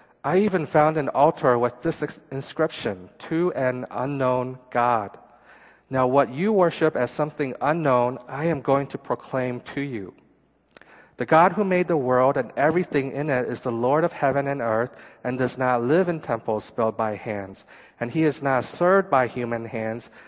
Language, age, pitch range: Korean, 40-59, 120-150 Hz